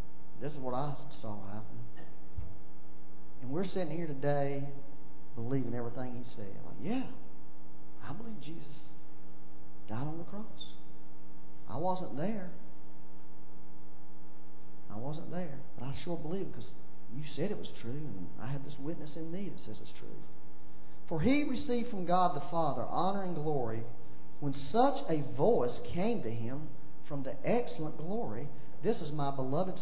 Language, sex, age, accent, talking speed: English, male, 40-59, American, 155 wpm